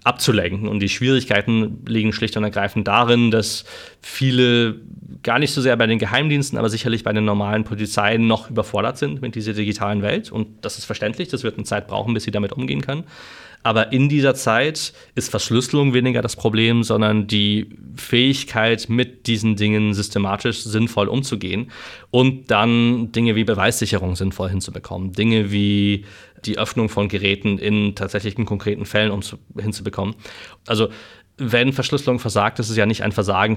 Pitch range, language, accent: 105-120 Hz, German, German